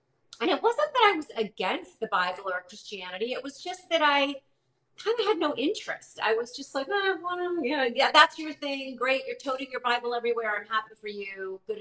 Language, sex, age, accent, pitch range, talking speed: English, female, 40-59, American, 190-275 Hz, 210 wpm